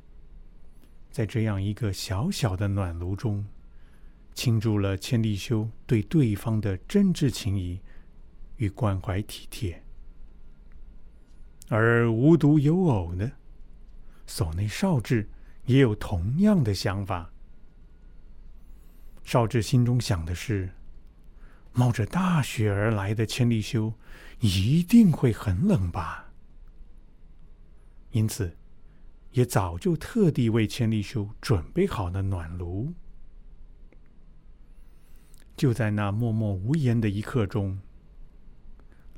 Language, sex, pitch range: Chinese, male, 95-120 Hz